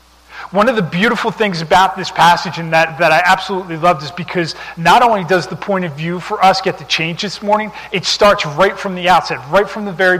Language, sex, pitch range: English, male, 155-200 Hz